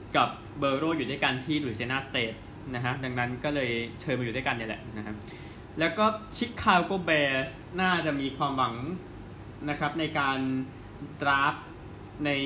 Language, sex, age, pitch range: Thai, male, 20-39, 110-150 Hz